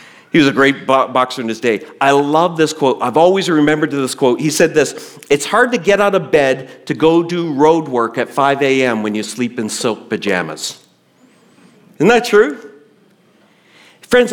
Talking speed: 190 wpm